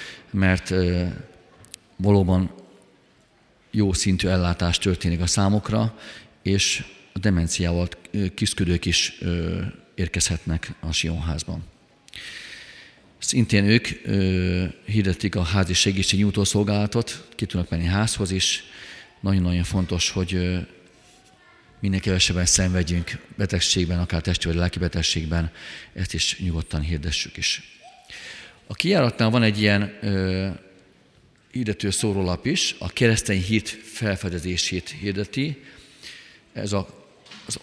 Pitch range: 90-110 Hz